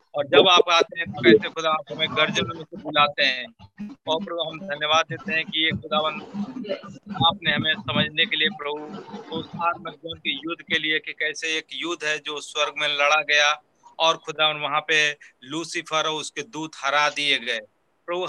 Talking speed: 115 wpm